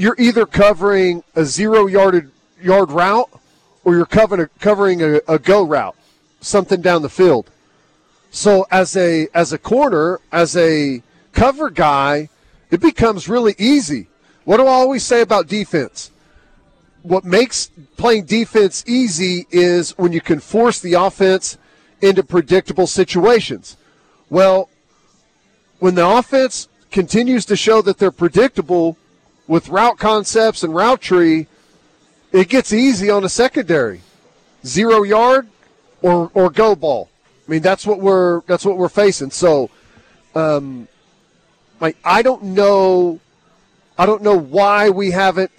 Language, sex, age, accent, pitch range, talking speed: English, male, 40-59, American, 170-210 Hz, 140 wpm